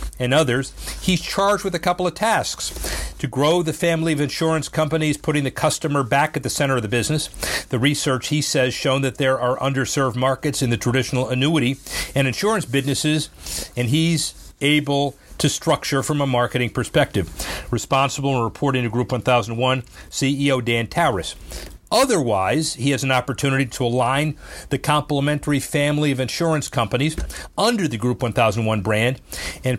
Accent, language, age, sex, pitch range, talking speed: American, English, 40-59, male, 125-155 Hz, 160 wpm